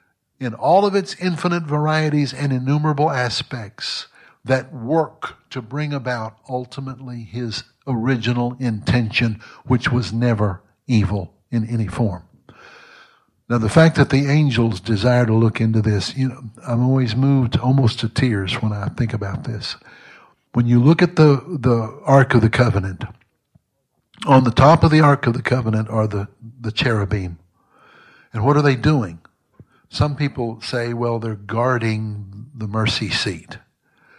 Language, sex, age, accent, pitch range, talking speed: English, male, 60-79, American, 110-130 Hz, 150 wpm